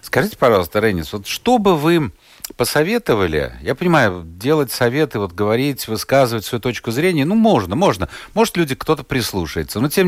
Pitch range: 105-150 Hz